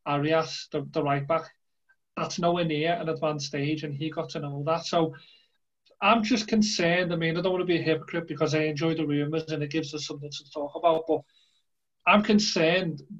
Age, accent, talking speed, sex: 30-49, British, 205 wpm, male